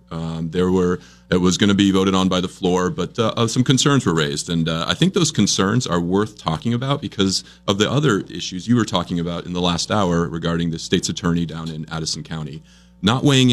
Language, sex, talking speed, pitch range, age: English, male, 230 wpm, 85-105 Hz, 30-49